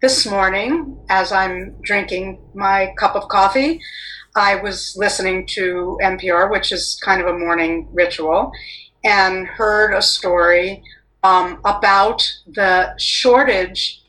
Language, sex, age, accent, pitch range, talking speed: English, female, 50-69, American, 175-220 Hz, 125 wpm